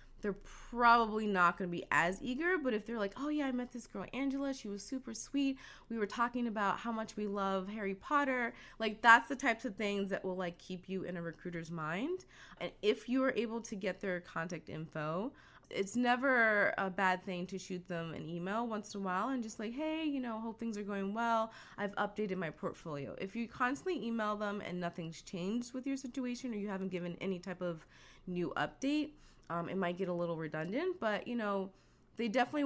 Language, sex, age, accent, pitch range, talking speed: English, female, 20-39, American, 175-230 Hz, 220 wpm